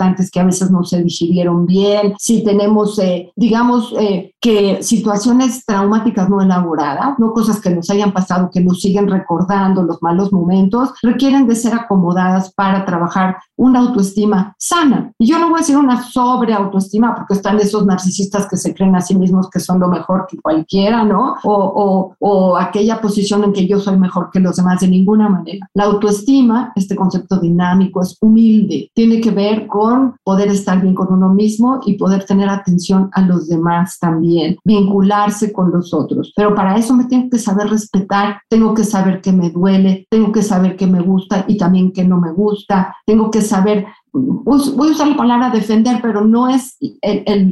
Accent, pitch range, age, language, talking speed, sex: Mexican, 185-225 Hz, 50-69, Spanish, 190 wpm, female